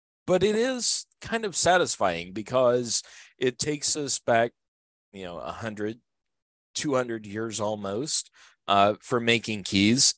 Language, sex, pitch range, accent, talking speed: English, male, 100-130 Hz, American, 125 wpm